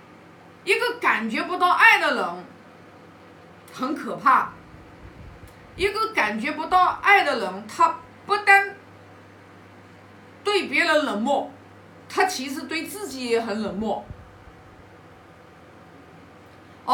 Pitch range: 260-395 Hz